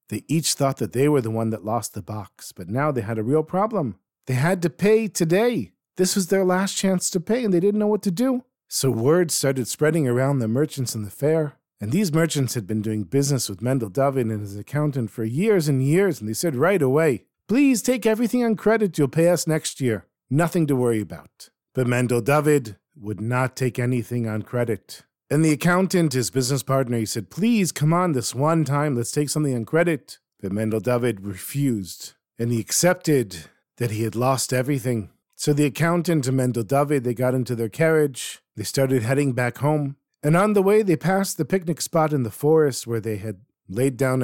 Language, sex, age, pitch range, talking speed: English, male, 50-69, 120-165 Hz, 215 wpm